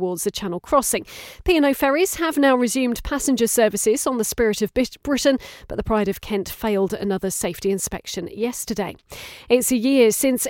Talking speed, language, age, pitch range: 170 wpm, English, 40-59, 195-250 Hz